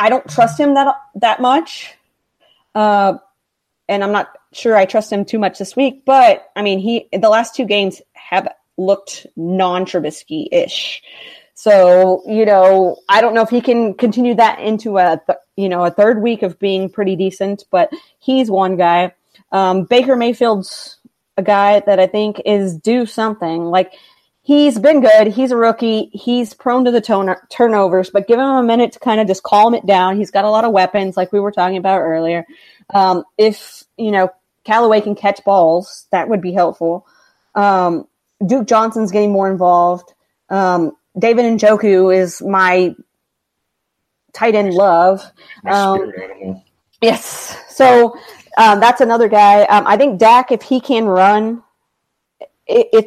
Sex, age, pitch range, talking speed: female, 30-49, 190-235 Hz, 170 wpm